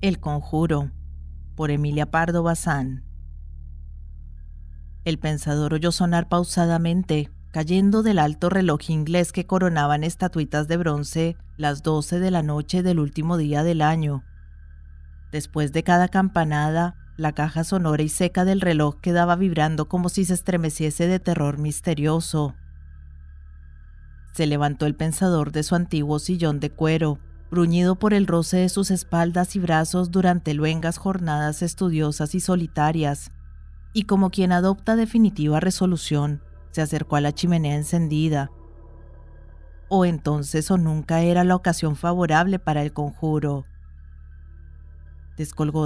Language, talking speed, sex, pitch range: Spanish, 130 wpm, female, 145-175 Hz